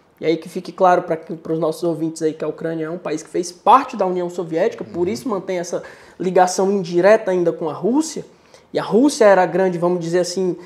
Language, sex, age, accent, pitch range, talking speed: Portuguese, male, 20-39, Brazilian, 190-260 Hz, 230 wpm